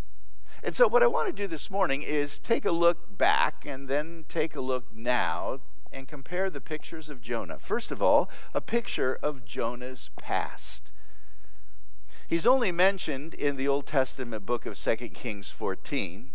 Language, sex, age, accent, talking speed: English, male, 50-69, American, 170 wpm